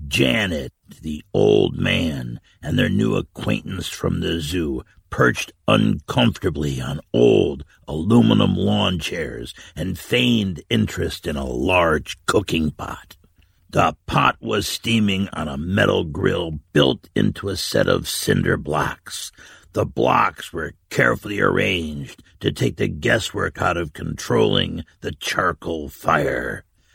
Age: 60-79